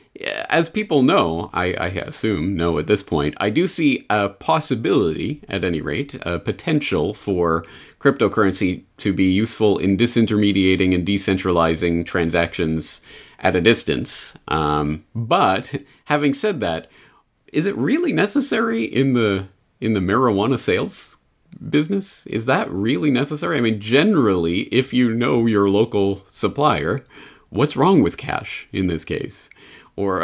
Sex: male